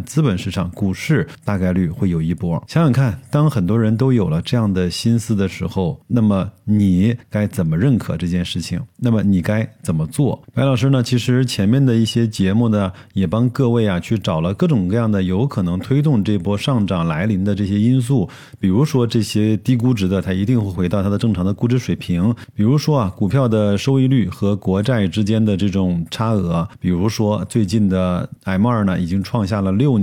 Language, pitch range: Chinese, 95-125 Hz